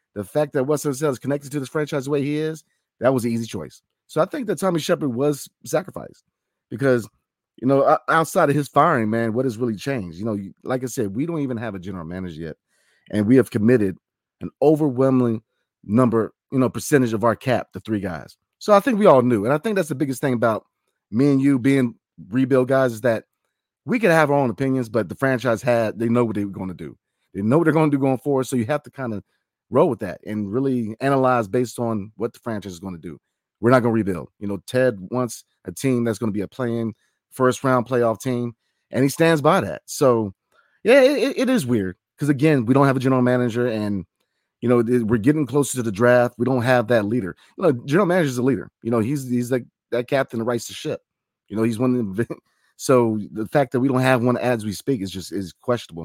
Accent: American